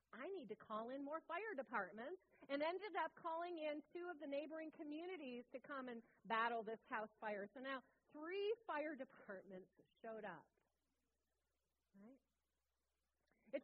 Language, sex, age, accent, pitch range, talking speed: English, female, 40-59, American, 215-315 Hz, 145 wpm